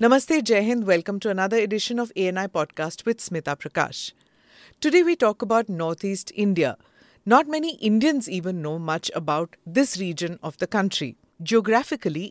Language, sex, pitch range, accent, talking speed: English, female, 170-245 Hz, Indian, 155 wpm